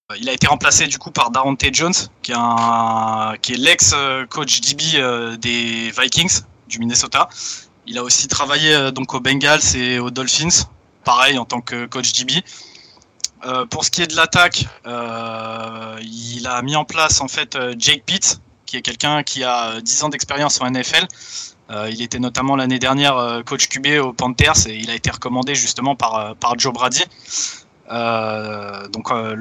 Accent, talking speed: French, 160 wpm